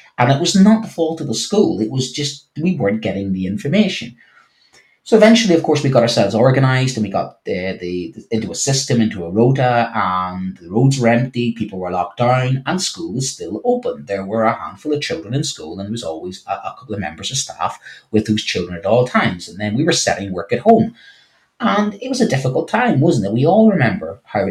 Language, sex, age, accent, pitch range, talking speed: English, male, 30-49, British, 110-155 Hz, 235 wpm